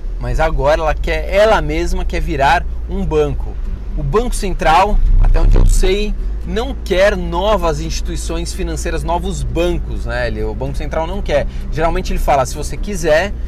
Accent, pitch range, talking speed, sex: Brazilian, 145-195 Hz, 160 wpm, male